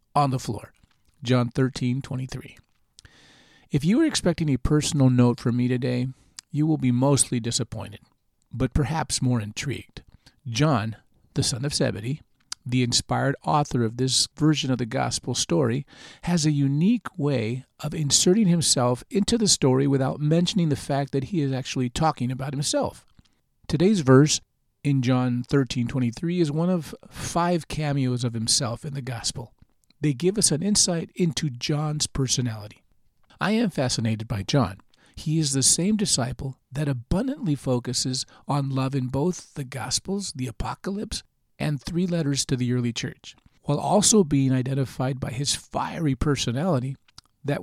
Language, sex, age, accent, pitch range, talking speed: English, male, 50-69, American, 125-155 Hz, 150 wpm